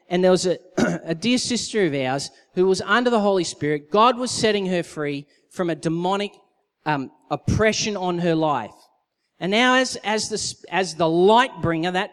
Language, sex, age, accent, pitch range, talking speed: English, male, 30-49, Australian, 165-215 Hz, 190 wpm